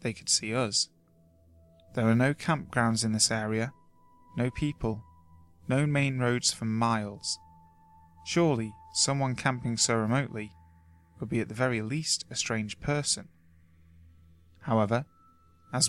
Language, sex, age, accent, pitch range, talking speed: English, male, 20-39, British, 85-130 Hz, 130 wpm